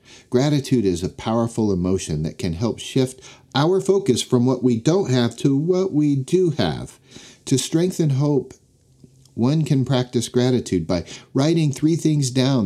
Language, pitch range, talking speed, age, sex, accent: English, 110-130 Hz, 155 wpm, 50-69, male, American